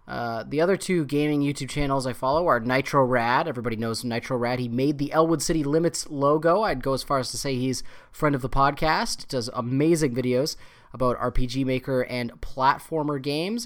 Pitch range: 125-165 Hz